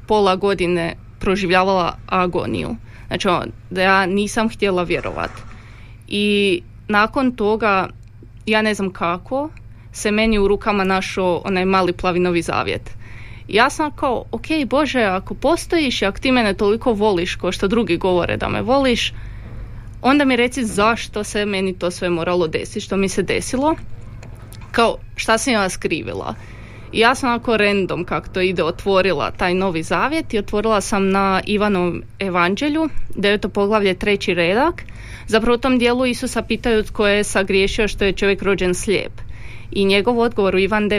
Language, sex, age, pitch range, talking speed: Croatian, female, 20-39, 175-220 Hz, 155 wpm